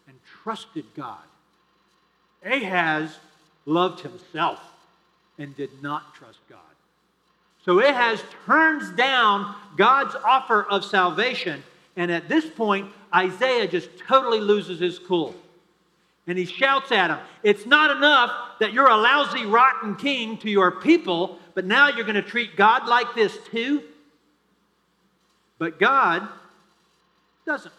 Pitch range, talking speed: 175-230 Hz, 125 wpm